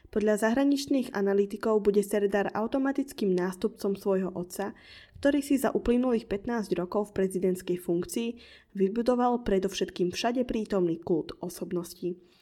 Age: 20-39